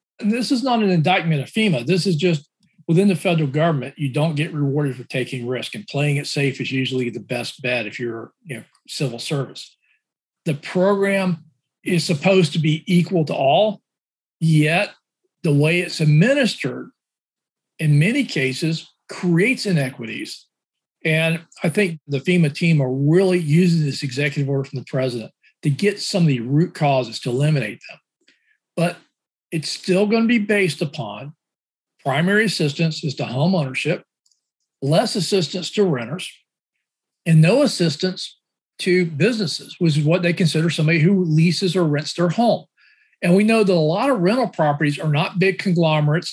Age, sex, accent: 40-59, male, American